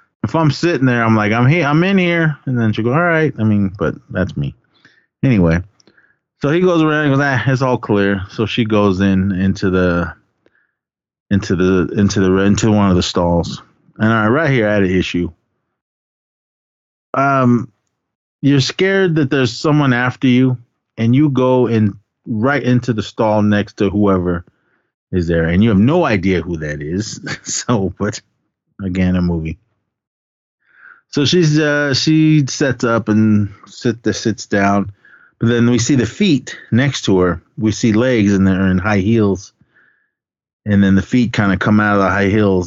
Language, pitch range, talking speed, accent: English, 95-125 Hz, 185 wpm, American